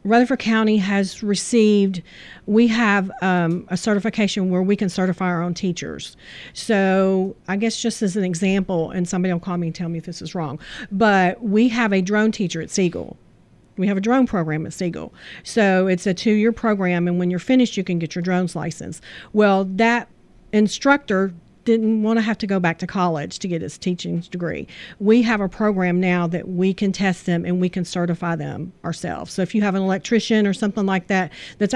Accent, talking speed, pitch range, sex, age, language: American, 205 wpm, 180-210 Hz, female, 40-59, English